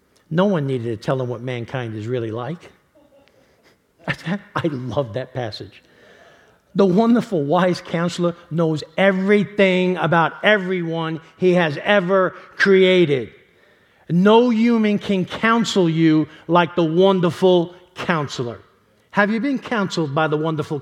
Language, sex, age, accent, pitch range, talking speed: English, male, 50-69, American, 130-180 Hz, 125 wpm